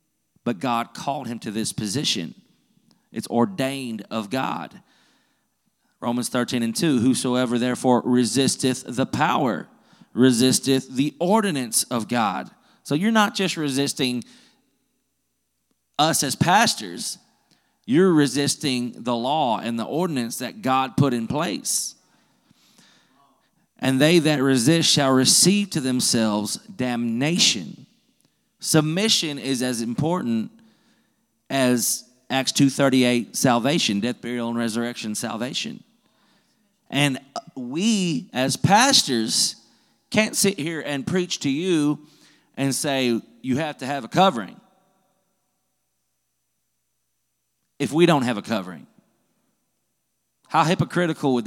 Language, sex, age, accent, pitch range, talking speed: English, male, 40-59, American, 120-165 Hz, 110 wpm